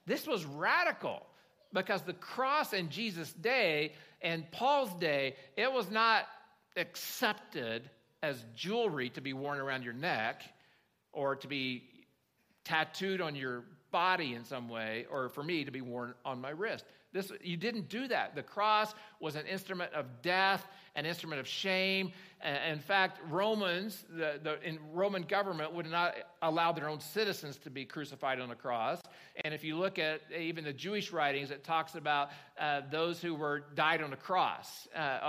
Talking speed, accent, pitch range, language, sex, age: 170 wpm, American, 140-185 Hz, English, male, 50-69